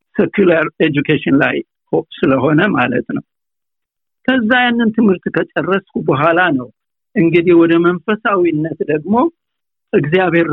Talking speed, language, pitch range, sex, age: 90 wpm, Amharic, 185-230 Hz, male, 60-79